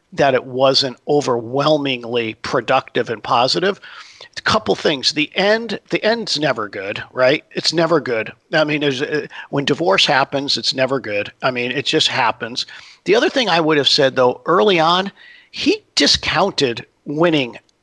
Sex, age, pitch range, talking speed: male, 50-69, 130-170 Hz, 155 wpm